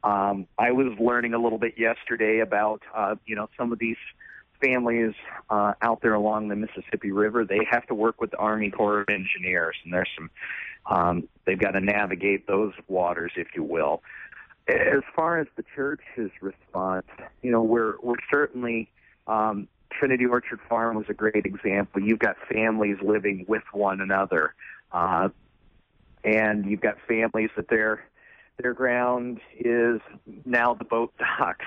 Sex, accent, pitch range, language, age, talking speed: male, American, 95-115 Hz, English, 40-59, 160 wpm